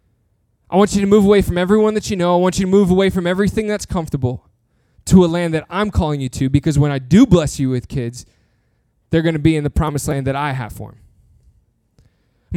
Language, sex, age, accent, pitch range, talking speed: English, male, 20-39, American, 140-220 Hz, 245 wpm